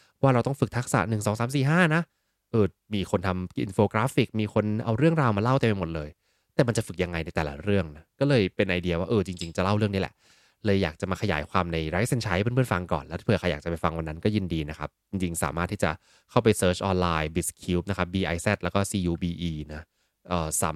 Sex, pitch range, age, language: male, 85-115 Hz, 20-39, Thai